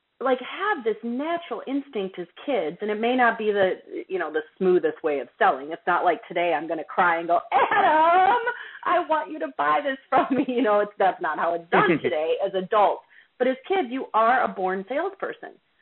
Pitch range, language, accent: 180-250 Hz, English, American